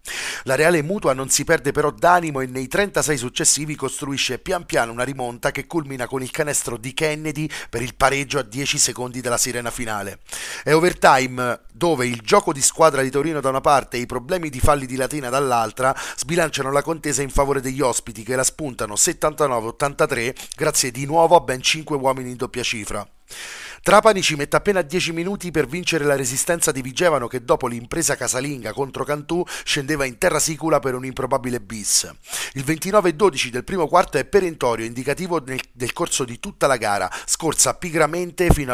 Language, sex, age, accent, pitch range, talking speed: Italian, male, 30-49, native, 125-160 Hz, 185 wpm